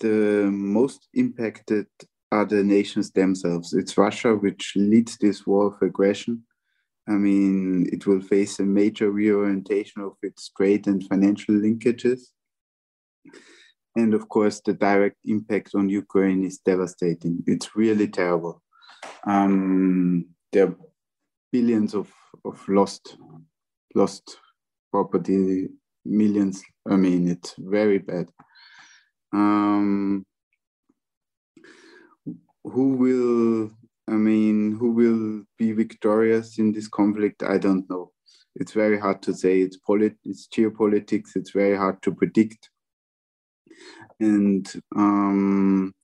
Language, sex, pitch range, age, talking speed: English, male, 95-105 Hz, 20-39, 115 wpm